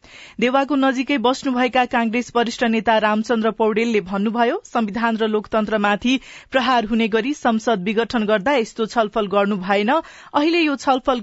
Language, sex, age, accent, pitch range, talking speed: English, female, 40-59, Indian, 215-270 Hz, 180 wpm